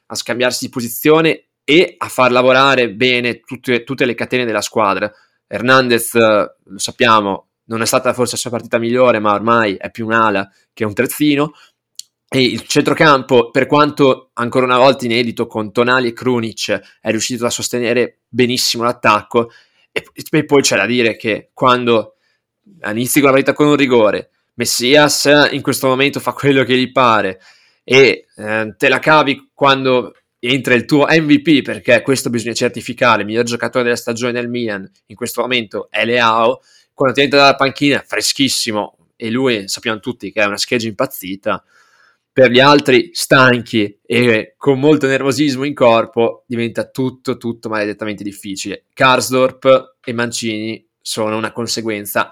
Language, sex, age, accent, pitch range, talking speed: Italian, male, 20-39, native, 115-135 Hz, 160 wpm